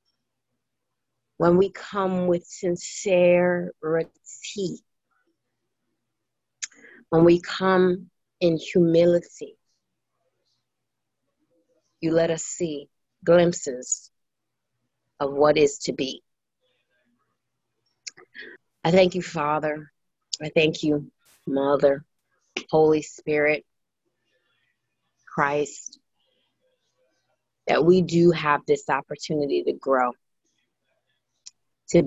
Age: 30-49